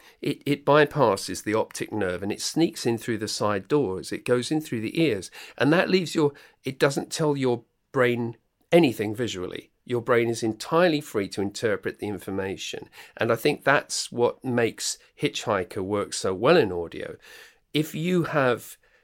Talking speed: 175 wpm